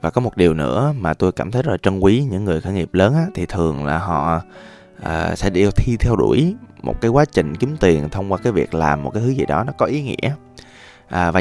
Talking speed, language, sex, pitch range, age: 250 wpm, Vietnamese, male, 80-115 Hz, 20-39